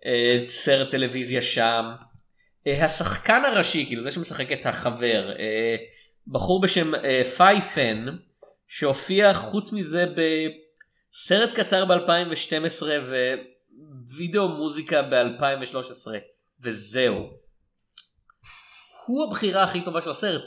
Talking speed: 85 wpm